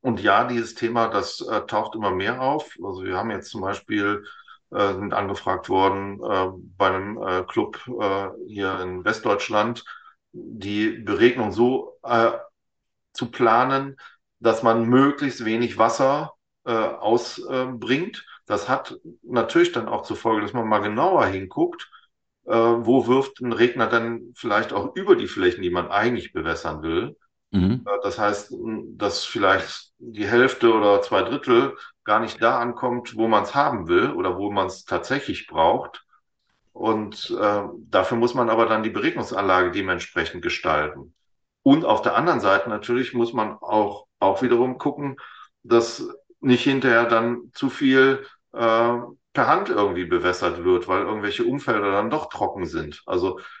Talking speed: 155 wpm